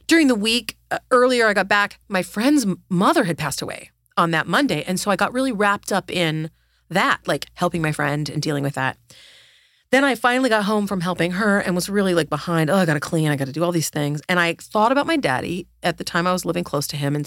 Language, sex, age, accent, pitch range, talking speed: English, female, 30-49, American, 150-215 Hz, 255 wpm